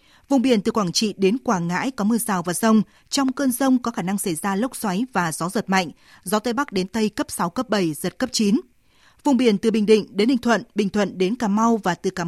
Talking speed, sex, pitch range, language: 270 wpm, female, 195-245 Hz, Vietnamese